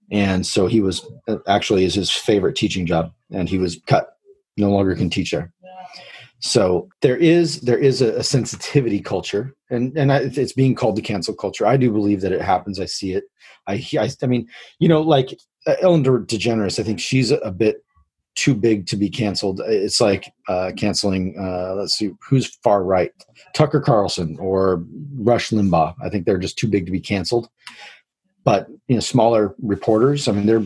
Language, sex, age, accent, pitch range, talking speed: English, male, 30-49, American, 100-135 Hz, 200 wpm